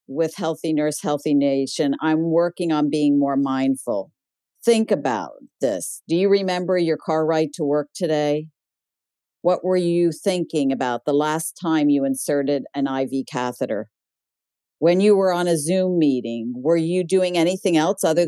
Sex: female